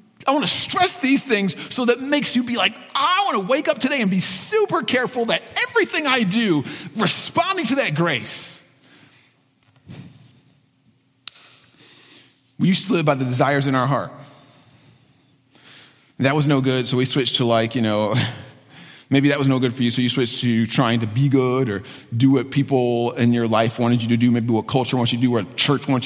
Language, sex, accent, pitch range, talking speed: English, male, American, 125-175 Hz, 200 wpm